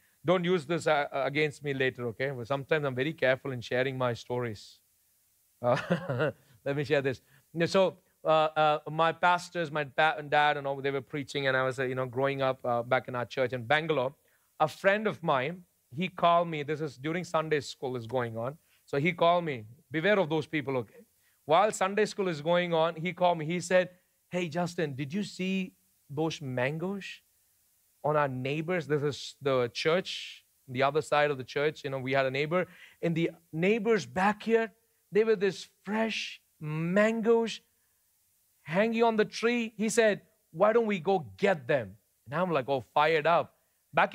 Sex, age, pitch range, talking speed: male, 40-59, 135-195 Hz, 190 wpm